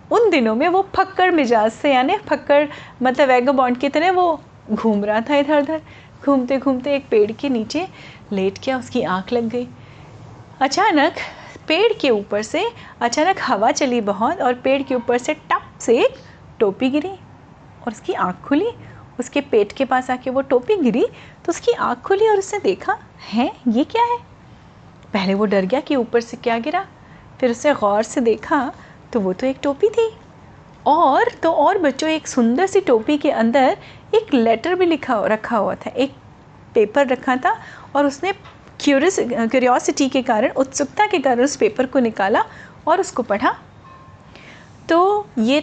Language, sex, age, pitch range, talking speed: Hindi, female, 30-49, 245-345 Hz, 175 wpm